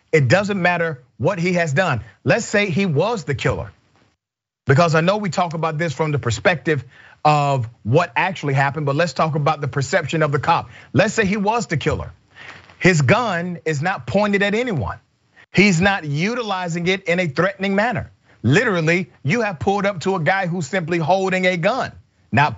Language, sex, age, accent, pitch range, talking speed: English, male, 40-59, American, 130-180 Hz, 190 wpm